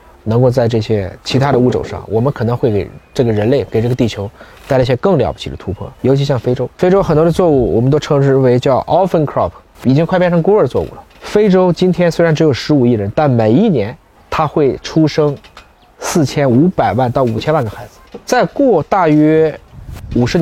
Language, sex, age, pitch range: Chinese, male, 20-39, 115-155 Hz